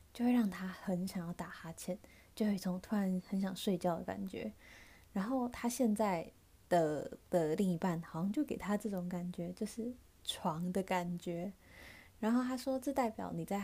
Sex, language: female, Chinese